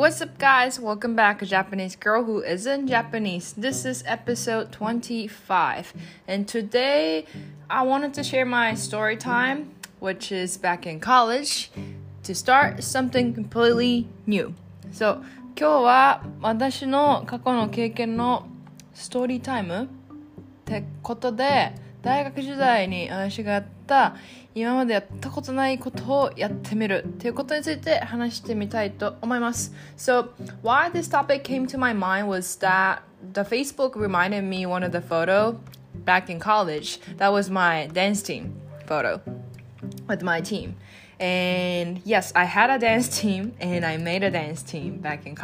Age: 20-39